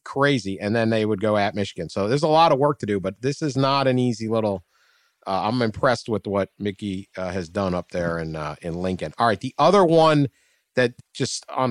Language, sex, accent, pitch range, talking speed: English, male, American, 105-140 Hz, 235 wpm